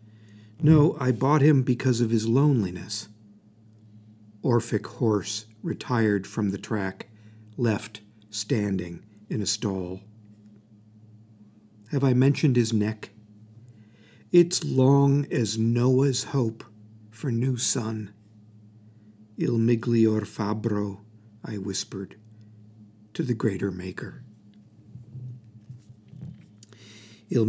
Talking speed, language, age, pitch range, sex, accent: 90 wpm, English, 50-69, 105-115 Hz, male, American